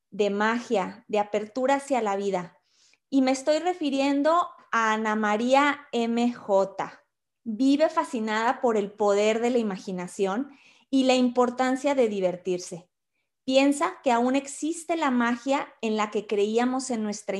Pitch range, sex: 210-280 Hz, female